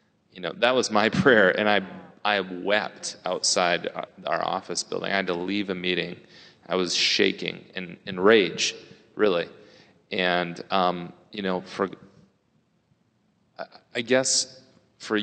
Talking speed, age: 140 wpm, 30-49